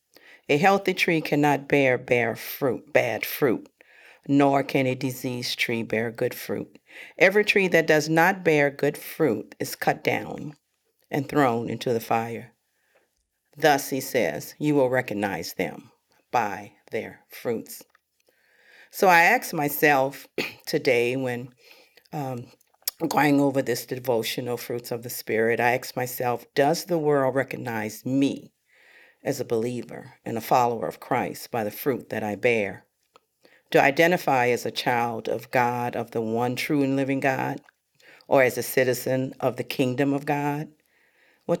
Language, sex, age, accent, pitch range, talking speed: English, female, 50-69, American, 120-150 Hz, 150 wpm